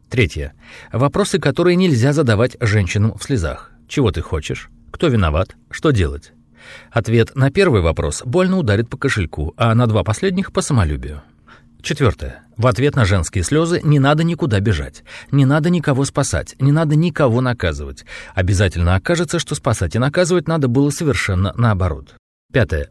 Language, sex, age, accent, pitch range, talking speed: Russian, male, 40-59, native, 95-155 Hz, 150 wpm